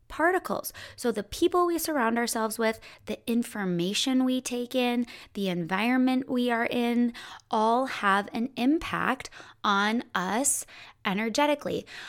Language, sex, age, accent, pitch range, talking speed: English, female, 20-39, American, 200-260 Hz, 125 wpm